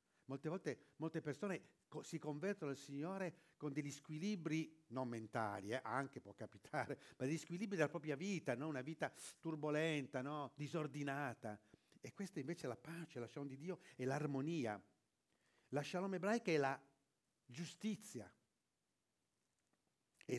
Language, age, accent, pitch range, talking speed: Italian, 50-69, native, 125-170 Hz, 145 wpm